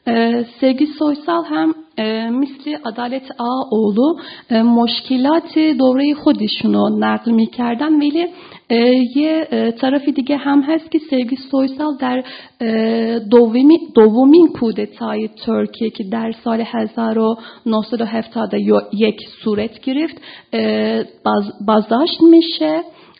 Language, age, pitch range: Persian, 40-59, 225-290 Hz